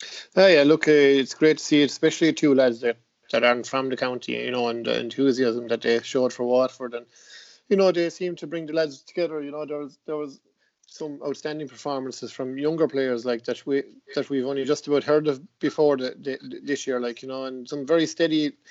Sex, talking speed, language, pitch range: male, 230 wpm, English, 125-140 Hz